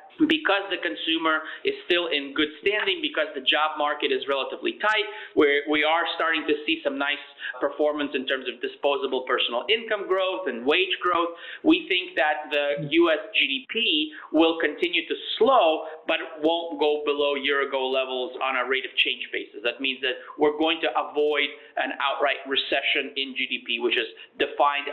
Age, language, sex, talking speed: 30-49, English, male, 170 wpm